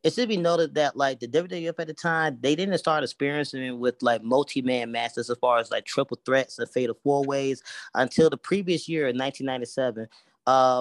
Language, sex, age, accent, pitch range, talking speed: English, male, 20-39, American, 115-135 Hz, 200 wpm